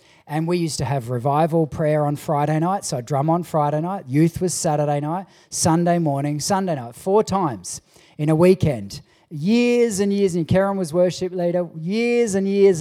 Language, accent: English, Australian